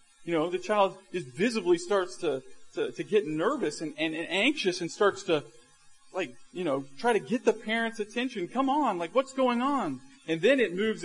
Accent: American